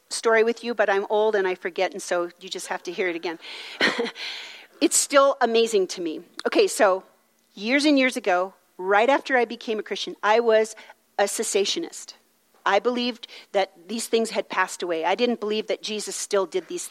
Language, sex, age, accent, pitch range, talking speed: English, female, 40-59, American, 195-290 Hz, 195 wpm